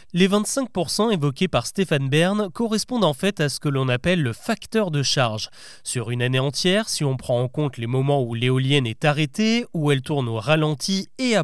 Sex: male